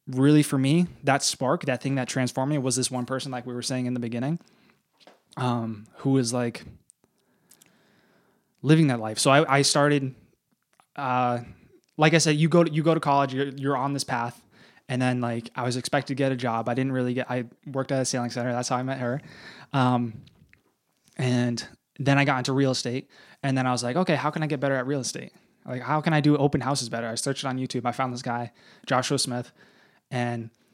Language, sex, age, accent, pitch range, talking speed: English, male, 20-39, American, 125-145 Hz, 220 wpm